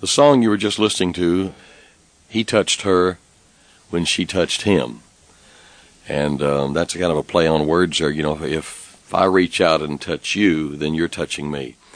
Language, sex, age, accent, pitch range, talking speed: English, male, 60-79, American, 85-105 Hz, 185 wpm